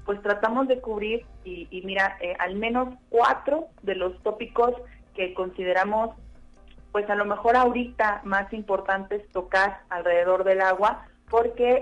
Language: Spanish